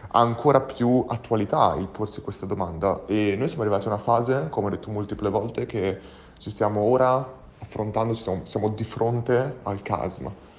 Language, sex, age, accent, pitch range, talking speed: Italian, male, 30-49, native, 105-125 Hz, 170 wpm